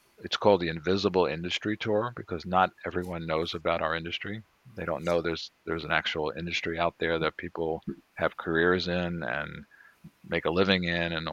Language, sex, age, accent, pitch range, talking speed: English, male, 50-69, American, 80-90 Hz, 180 wpm